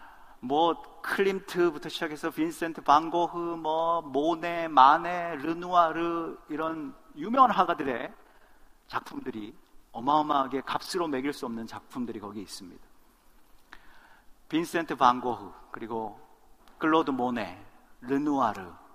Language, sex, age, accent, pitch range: Korean, male, 40-59, native, 140-180 Hz